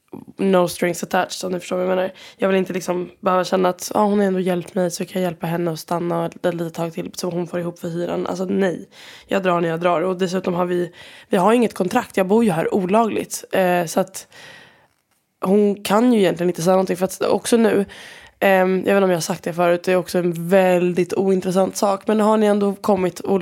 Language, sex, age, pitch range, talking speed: Swedish, female, 20-39, 180-210 Hz, 230 wpm